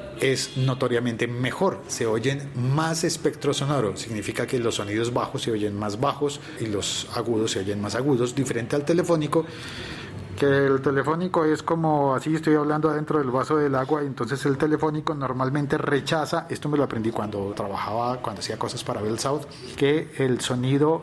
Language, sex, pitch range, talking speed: Spanish, male, 120-155 Hz, 170 wpm